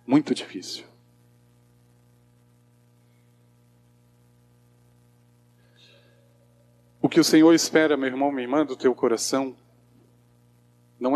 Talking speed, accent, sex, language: 80 wpm, Brazilian, male, Portuguese